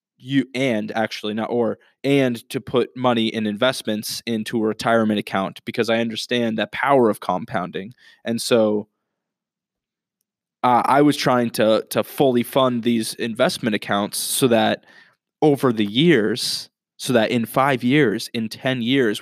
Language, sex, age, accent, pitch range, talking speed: English, male, 20-39, American, 110-125 Hz, 150 wpm